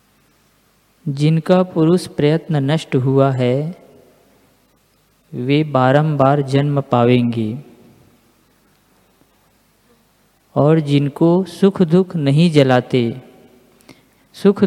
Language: Hindi